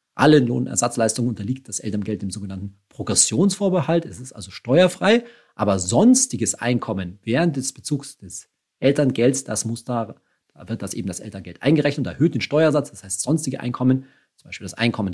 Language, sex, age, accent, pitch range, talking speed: German, male, 40-59, German, 100-135 Hz, 165 wpm